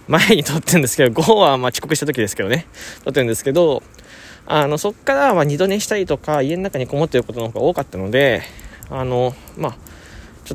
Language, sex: Japanese, male